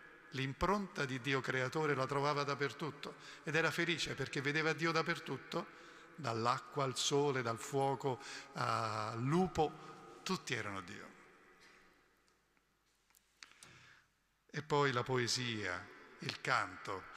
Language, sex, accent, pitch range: Italian, male, native, 110-145 Hz